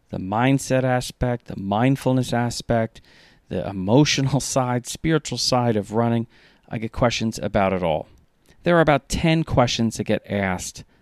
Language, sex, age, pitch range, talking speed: English, male, 40-59, 100-130 Hz, 145 wpm